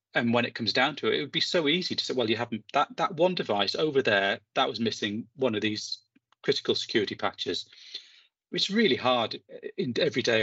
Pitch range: 105-125 Hz